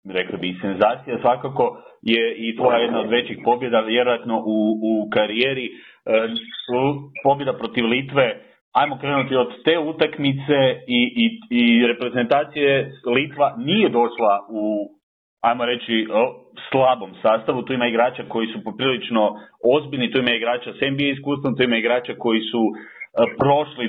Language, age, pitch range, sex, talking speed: Croatian, 40-59, 115-150 Hz, male, 140 wpm